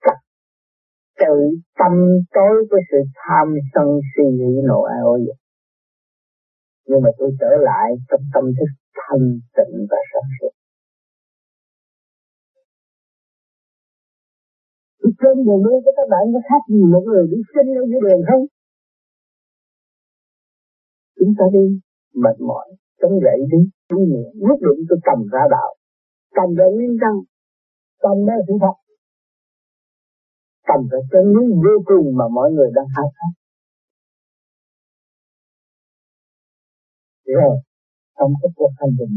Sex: male